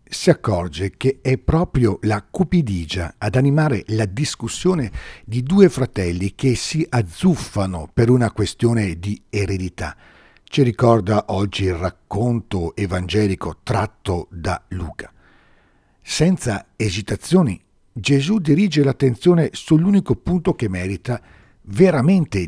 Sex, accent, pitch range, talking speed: male, native, 95-135 Hz, 110 wpm